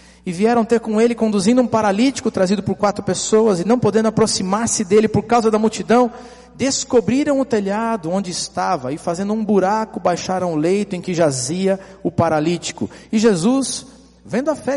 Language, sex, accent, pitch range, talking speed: Portuguese, male, Brazilian, 175-240 Hz, 175 wpm